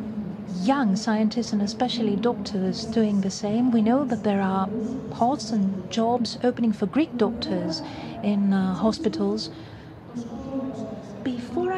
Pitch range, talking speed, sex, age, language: 210-250 Hz, 120 wpm, female, 40-59, Greek